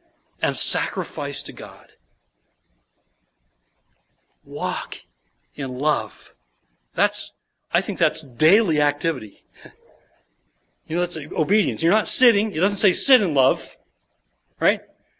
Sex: male